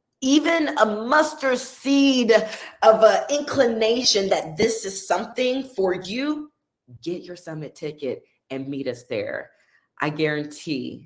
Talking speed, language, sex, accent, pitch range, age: 125 wpm, English, female, American, 155-240 Hz, 20-39